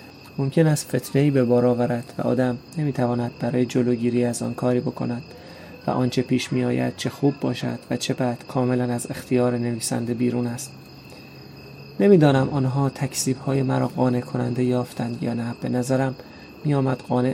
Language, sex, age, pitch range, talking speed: Persian, male, 30-49, 120-135 Hz, 150 wpm